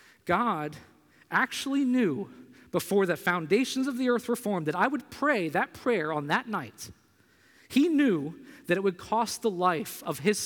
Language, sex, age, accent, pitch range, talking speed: English, male, 40-59, American, 150-210 Hz, 170 wpm